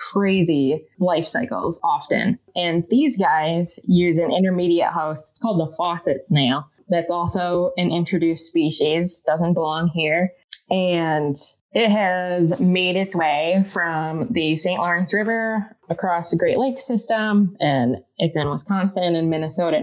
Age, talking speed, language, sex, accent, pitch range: 20-39, 140 wpm, English, female, American, 160-195 Hz